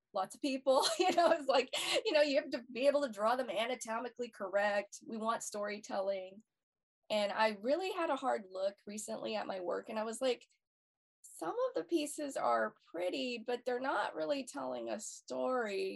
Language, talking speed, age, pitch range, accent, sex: English, 190 wpm, 20-39, 200-275 Hz, American, female